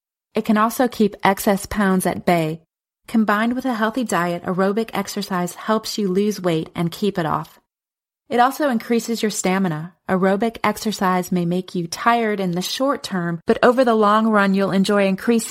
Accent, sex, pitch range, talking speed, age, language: American, female, 185-225 Hz, 180 wpm, 30-49, English